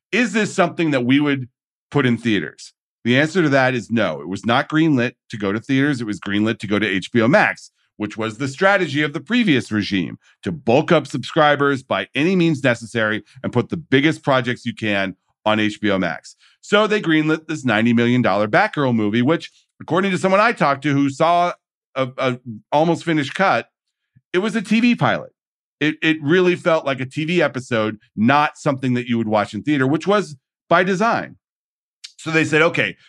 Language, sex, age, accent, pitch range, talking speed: English, male, 40-59, American, 115-160 Hz, 195 wpm